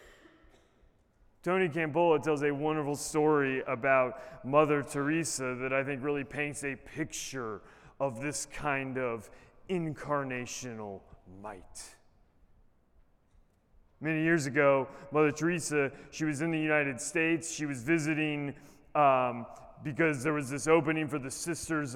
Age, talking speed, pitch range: 30-49, 125 wpm, 140-165 Hz